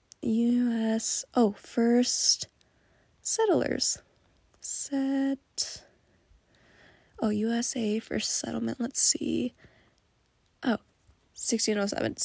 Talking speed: 65 wpm